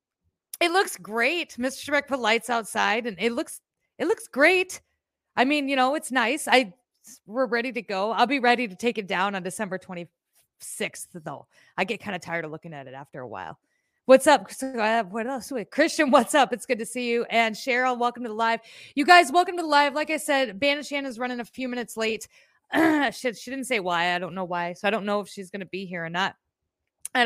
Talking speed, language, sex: 230 wpm, English, female